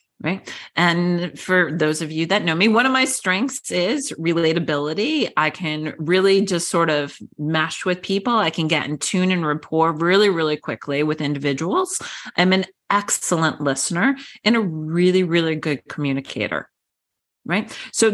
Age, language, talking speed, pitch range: 30-49, English, 160 wpm, 160-215 Hz